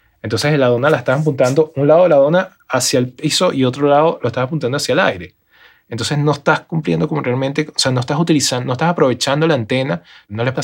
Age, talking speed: 20-39, 235 wpm